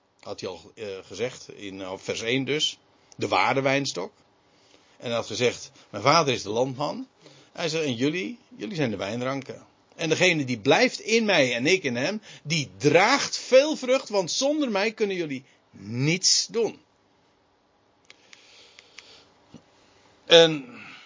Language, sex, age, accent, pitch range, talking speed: Dutch, male, 50-69, Dutch, 130-215 Hz, 150 wpm